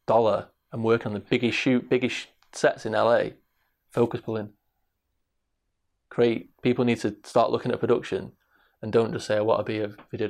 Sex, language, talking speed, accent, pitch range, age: male, English, 180 wpm, British, 105-115 Hz, 20-39